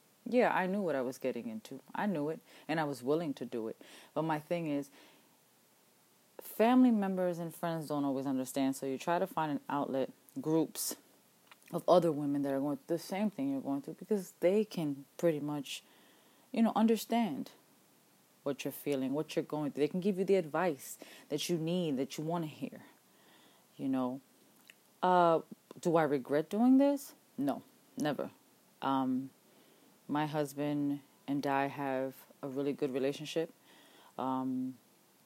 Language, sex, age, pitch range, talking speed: English, female, 30-49, 140-180 Hz, 170 wpm